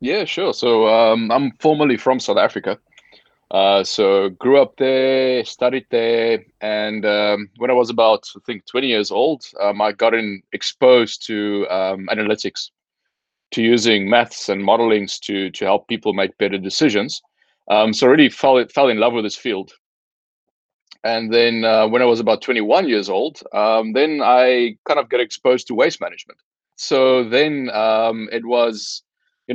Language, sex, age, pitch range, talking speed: English, male, 20-39, 105-130 Hz, 170 wpm